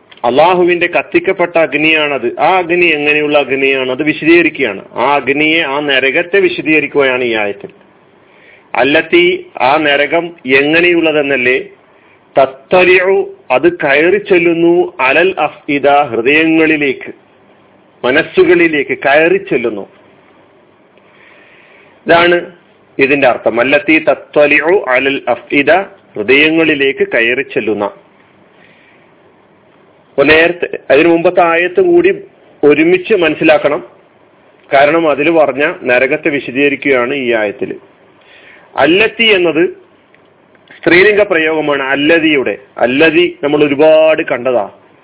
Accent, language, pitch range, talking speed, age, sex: native, Malayalam, 145-210 Hz, 75 wpm, 40-59, male